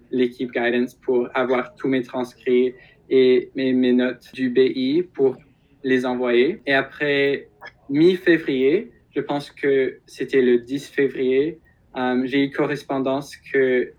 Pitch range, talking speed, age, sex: 125-140 Hz, 130 wpm, 20-39, male